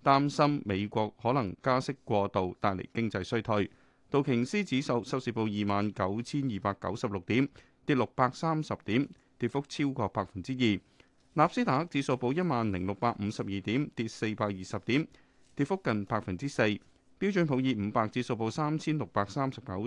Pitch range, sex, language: 105-145 Hz, male, Chinese